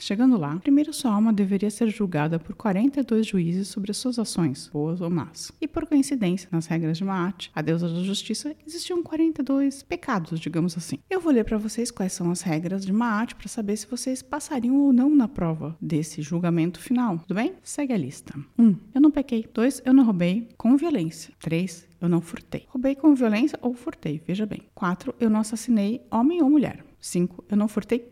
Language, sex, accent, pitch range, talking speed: Portuguese, female, Brazilian, 175-260 Hz, 205 wpm